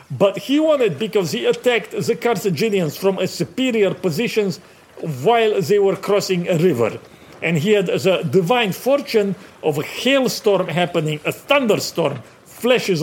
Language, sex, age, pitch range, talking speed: English, male, 50-69, 170-215 Hz, 145 wpm